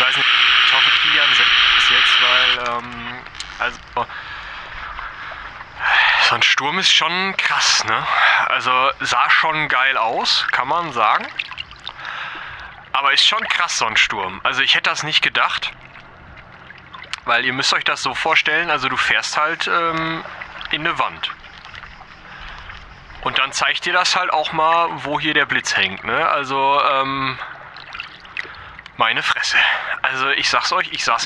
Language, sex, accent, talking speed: German, male, German, 145 wpm